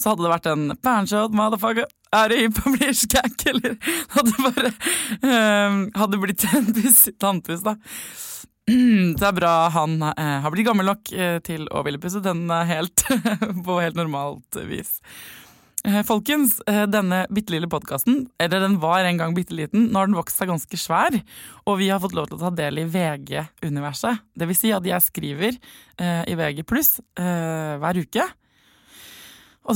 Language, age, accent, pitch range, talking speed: English, 20-39, Swedish, 165-220 Hz, 150 wpm